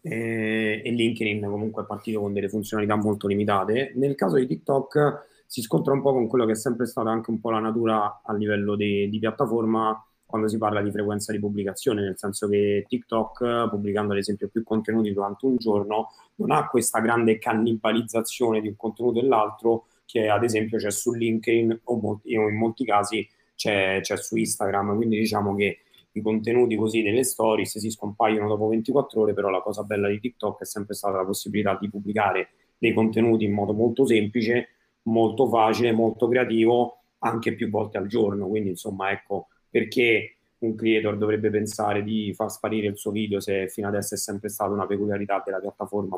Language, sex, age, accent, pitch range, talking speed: Italian, male, 30-49, native, 105-115 Hz, 185 wpm